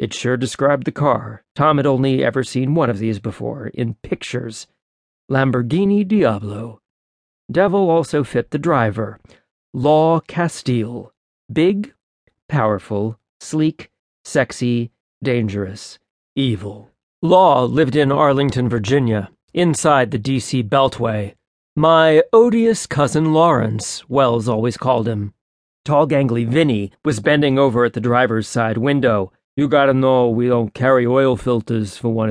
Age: 40-59